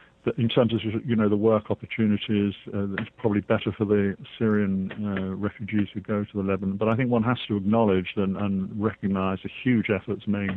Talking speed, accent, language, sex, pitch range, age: 205 wpm, British, English, male, 95-110 Hz, 50-69